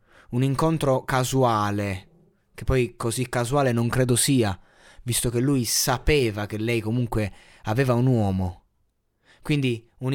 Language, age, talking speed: Italian, 20-39, 130 wpm